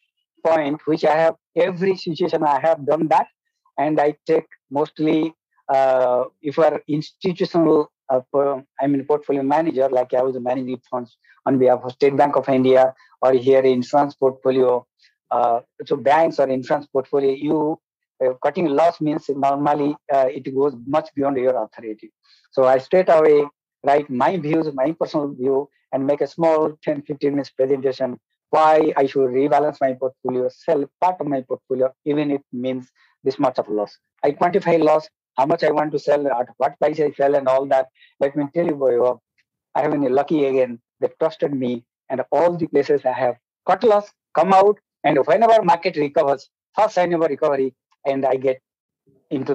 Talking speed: 180 wpm